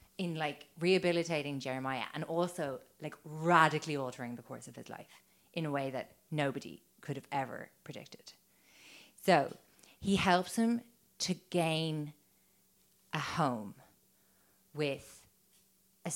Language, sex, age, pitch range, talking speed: English, female, 30-49, 135-165 Hz, 125 wpm